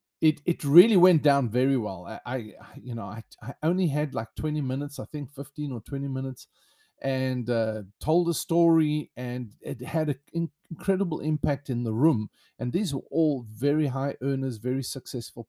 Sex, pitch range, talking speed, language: male, 120-150 Hz, 180 wpm, English